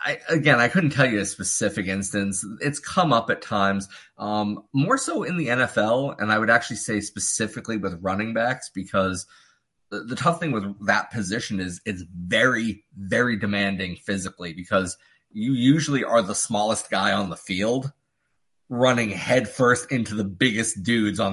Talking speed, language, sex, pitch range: 170 wpm, English, male, 95-115 Hz